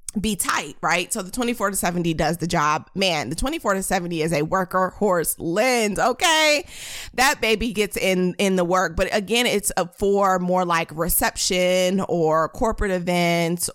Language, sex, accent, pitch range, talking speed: English, female, American, 175-210 Hz, 175 wpm